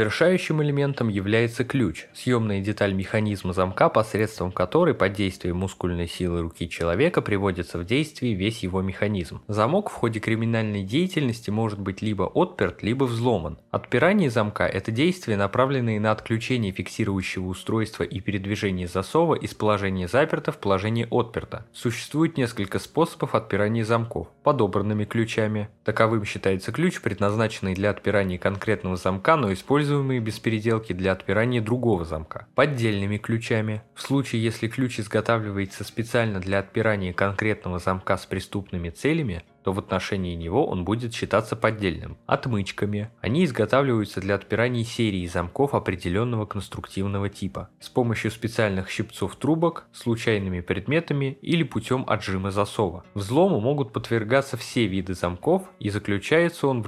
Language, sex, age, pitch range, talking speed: Russian, male, 20-39, 100-125 Hz, 140 wpm